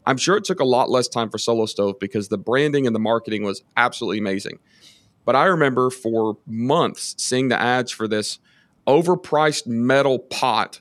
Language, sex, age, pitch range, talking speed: English, male, 40-59, 110-135 Hz, 185 wpm